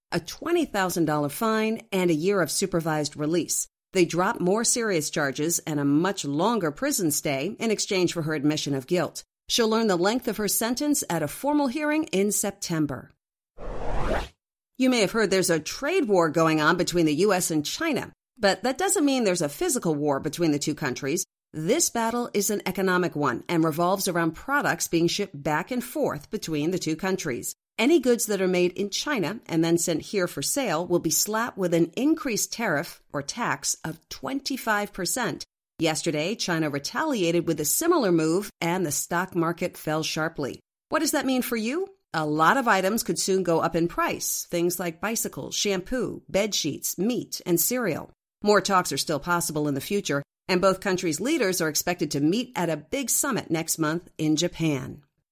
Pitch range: 160-220 Hz